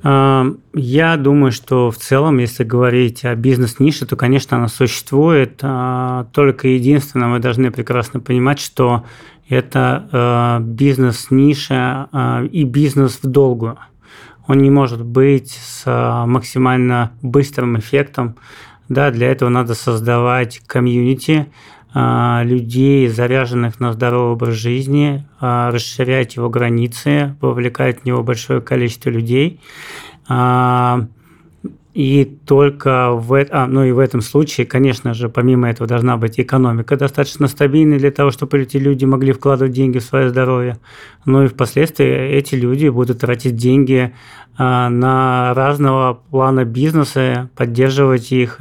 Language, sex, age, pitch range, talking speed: Russian, male, 20-39, 120-140 Hz, 120 wpm